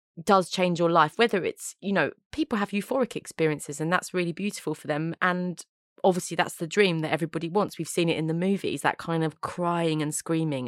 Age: 20-39